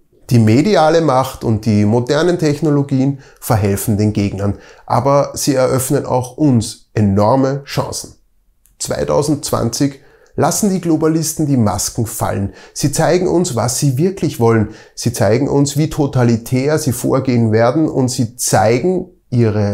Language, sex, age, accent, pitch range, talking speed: German, male, 30-49, German, 115-150 Hz, 130 wpm